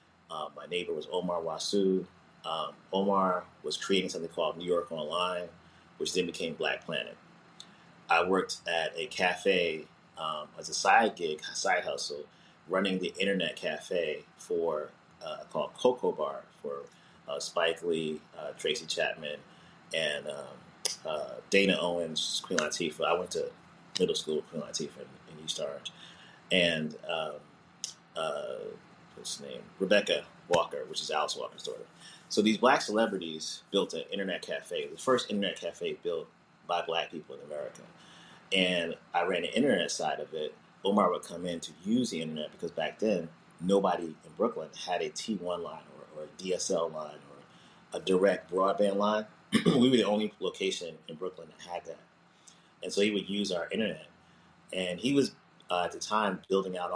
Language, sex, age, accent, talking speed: English, male, 30-49, American, 165 wpm